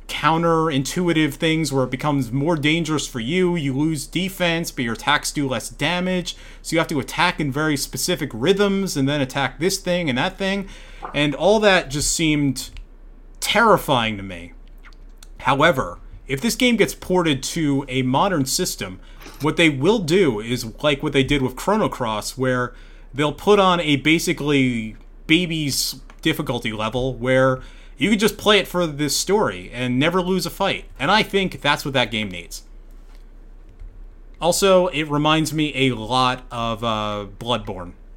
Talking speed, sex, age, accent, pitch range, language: 165 wpm, male, 30-49, American, 120-170 Hz, English